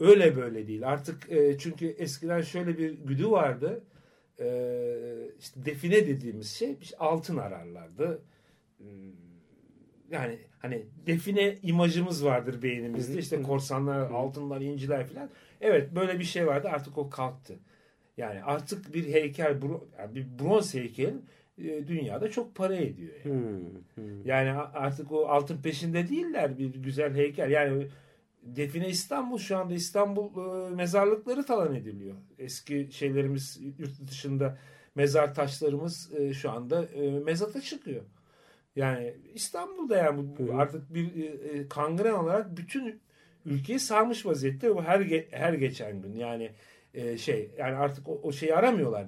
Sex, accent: male, native